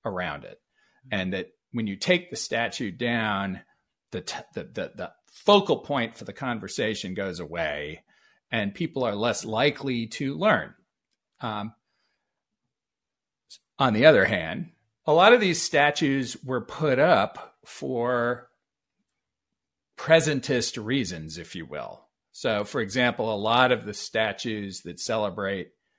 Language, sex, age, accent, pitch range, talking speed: English, male, 40-59, American, 105-145 Hz, 130 wpm